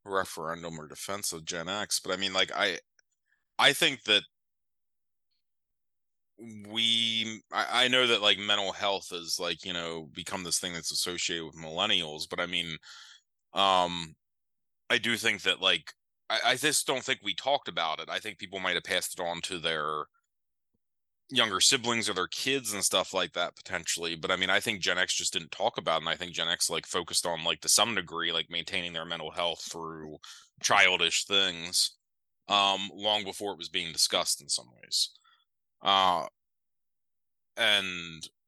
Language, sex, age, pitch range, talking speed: English, male, 30-49, 80-100 Hz, 180 wpm